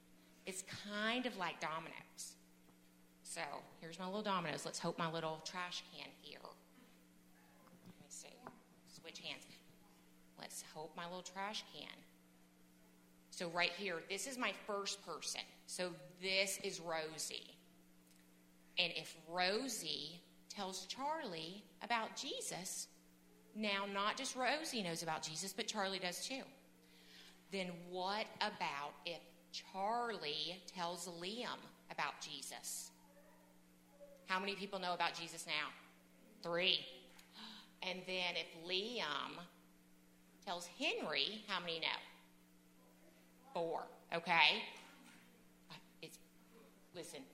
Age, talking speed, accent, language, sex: 30-49, 110 wpm, American, English, female